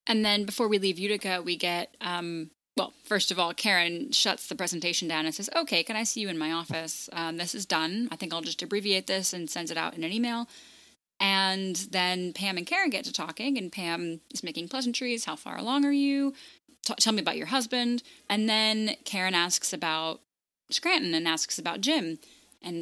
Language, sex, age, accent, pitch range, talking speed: English, female, 10-29, American, 170-235 Hz, 210 wpm